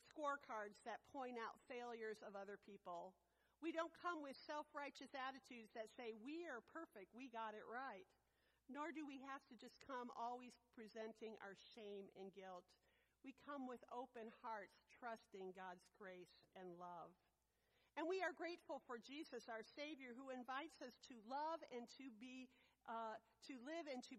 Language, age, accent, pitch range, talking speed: English, 50-69, American, 220-275 Hz, 170 wpm